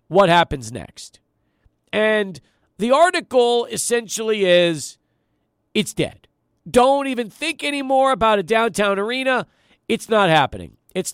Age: 40-59